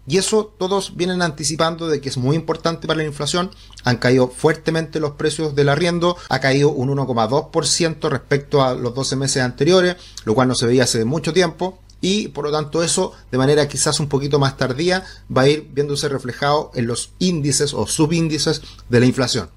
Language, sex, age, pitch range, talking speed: Spanish, male, 30-49, 125-155 Hz, 195 wpm